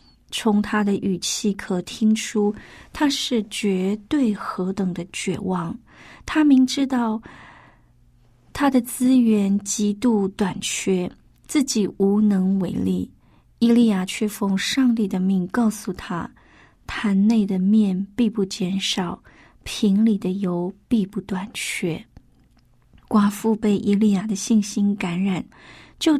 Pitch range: 190-230 Hz